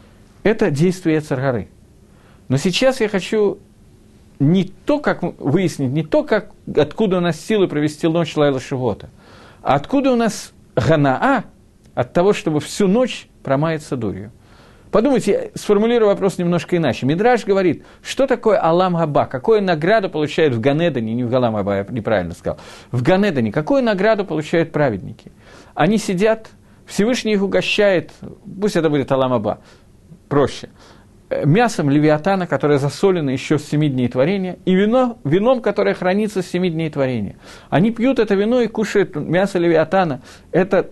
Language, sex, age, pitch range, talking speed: Russian, male, 50-69, 140-205 Hz, 145 wpm